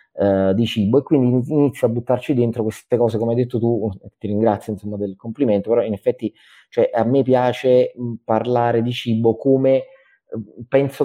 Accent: native